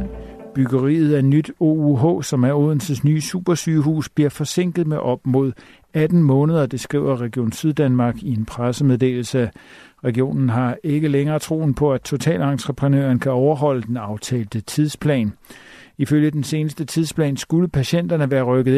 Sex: male